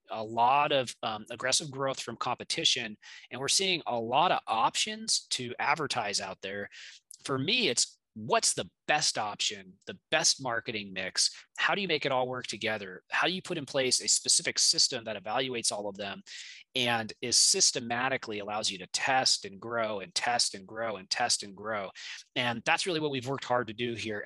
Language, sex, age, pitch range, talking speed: English, male, 20-39, 110-150 Hz, 195 wpm